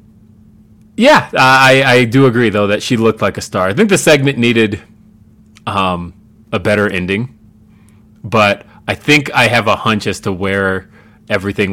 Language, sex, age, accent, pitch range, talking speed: English, male, 30-49, American, 100-120 Hz, 165 wpm